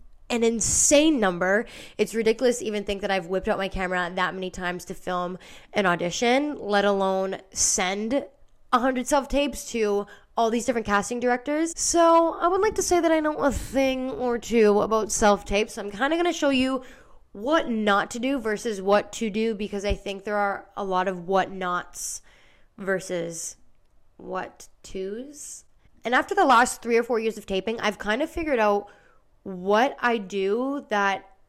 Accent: American